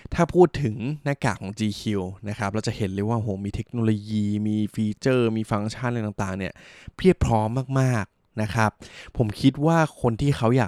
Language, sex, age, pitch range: Thai, male, 20-39, 105-130 Hz